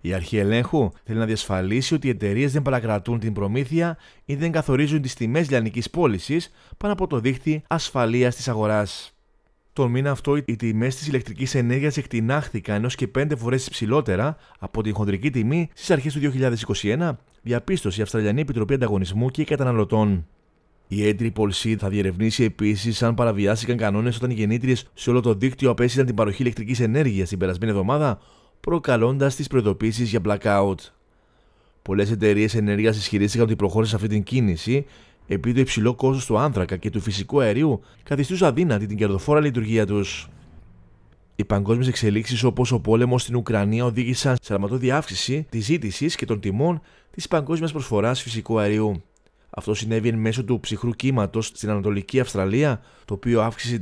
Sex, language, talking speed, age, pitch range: male, Greek, 165 wpm, 30-49, 105-135 Hz